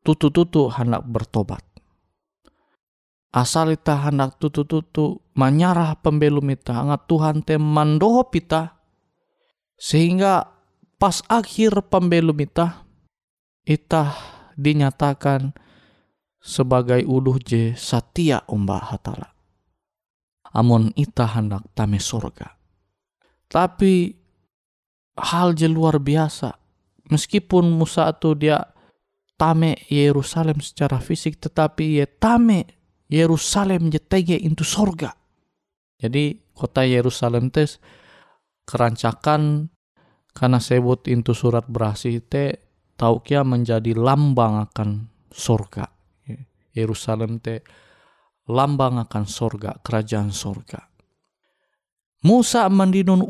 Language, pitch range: Indonesian, 120-165 Hz